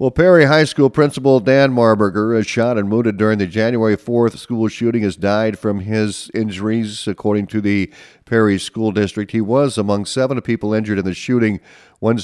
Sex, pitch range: male, 95-115 Hz